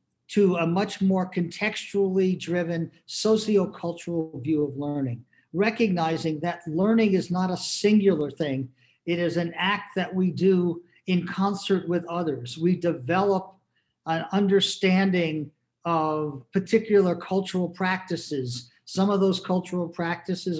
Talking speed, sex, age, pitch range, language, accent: 120 wpm, male, 50-69, 165-195 Hz, English, American